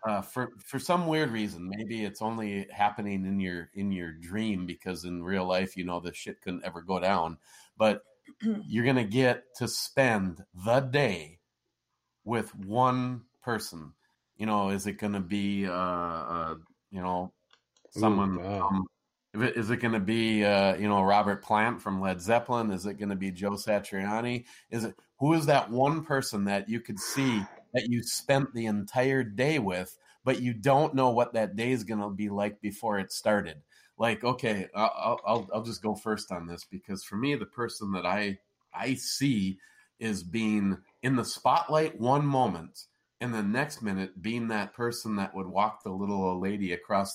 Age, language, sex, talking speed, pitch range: 30-49, English, male, 180 wpm, 95-120 Hz